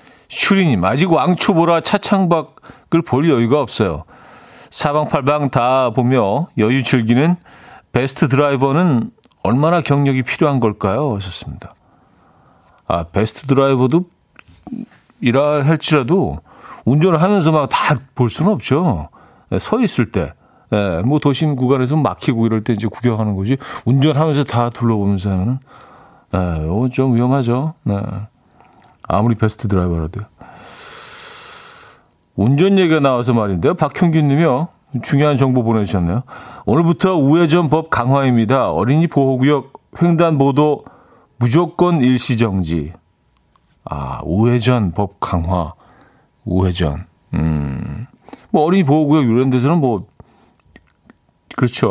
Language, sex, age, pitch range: Korean, male, 40-59, 110-155 Hz